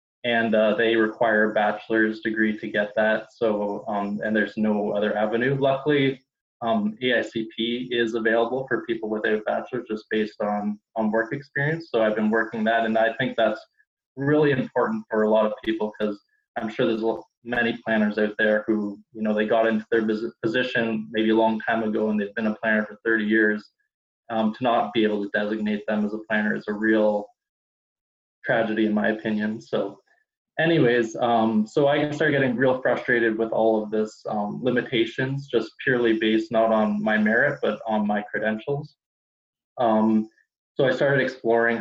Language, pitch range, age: English, 110-115 Hz, 20-39